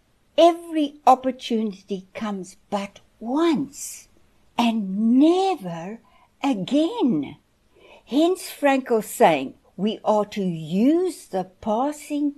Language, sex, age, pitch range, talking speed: English, female, 60-79, 195-285 Hz, 80 wpm